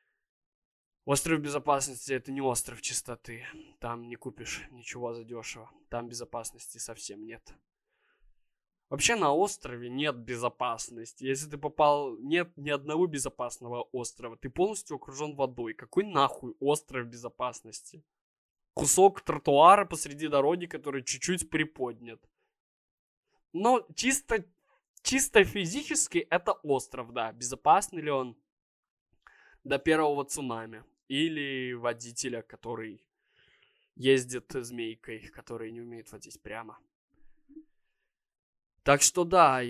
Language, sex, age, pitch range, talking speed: Russian, male, 20-39, 125-165 Hz, 105 wpm